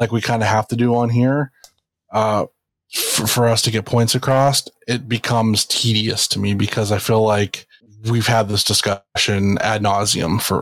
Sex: male